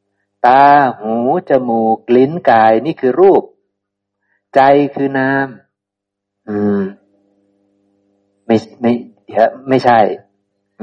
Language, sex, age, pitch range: Thai, male, 60-79, 100-130 Hz